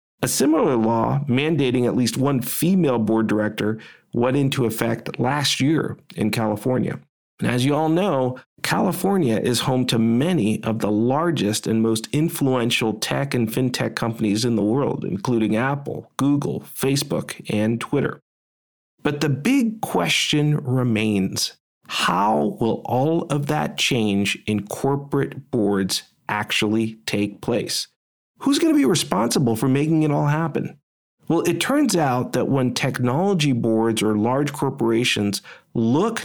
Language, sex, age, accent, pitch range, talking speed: English, male, 40-59, American, 110-150 Hz, 140 wpm